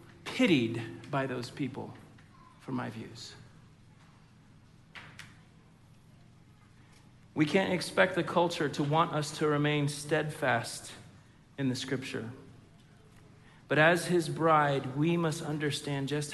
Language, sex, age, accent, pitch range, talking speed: English, male, 40-59, American, 130-170 Hz, 105 wpm